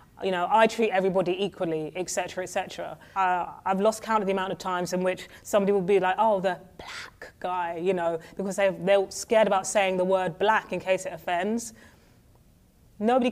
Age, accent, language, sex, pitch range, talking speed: 30-49, British, English, female, 180-215 Hz, 200 wpm